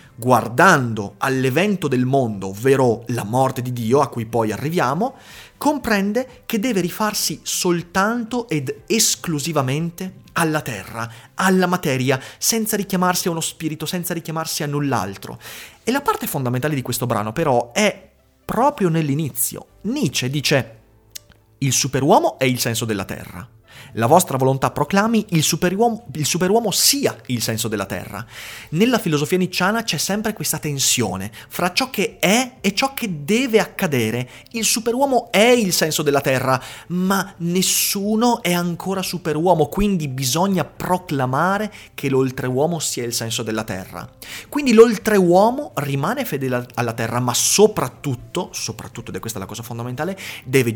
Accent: native